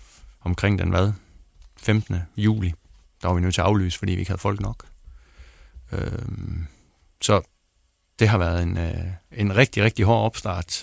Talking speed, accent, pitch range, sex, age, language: 165 wpm, native, 95-115 Hz, male, 30-49, Danish